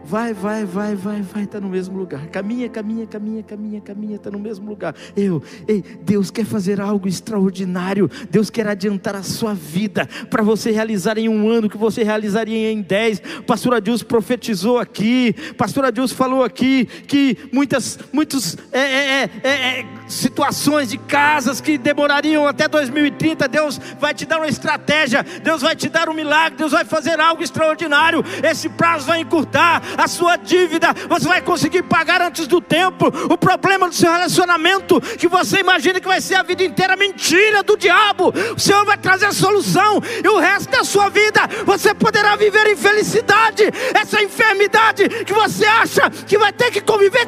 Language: Portuguese